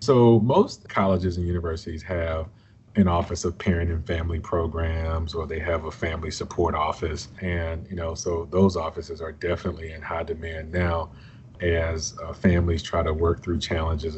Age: 30-49